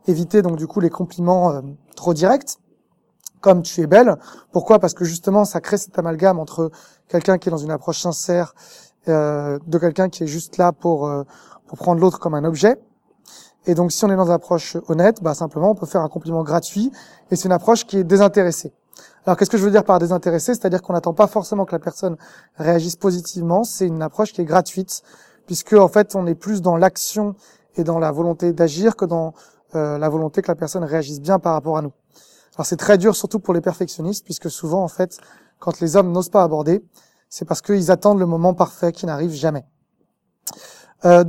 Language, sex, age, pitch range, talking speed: French, male, 20-39, 165-195 Hz, 220 wpm